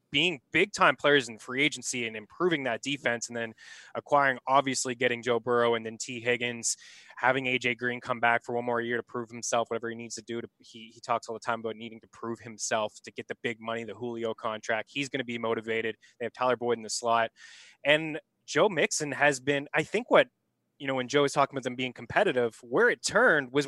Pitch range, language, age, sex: 120-155 Hz, English, 20-39, male